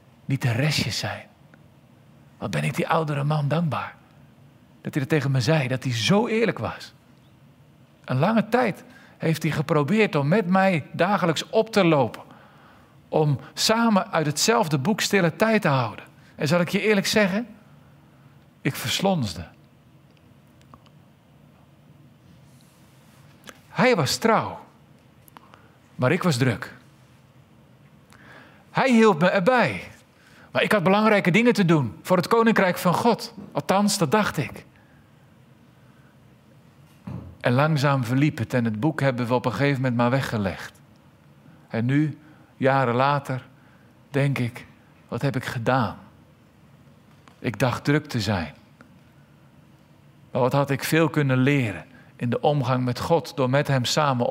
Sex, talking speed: male, 135 wpm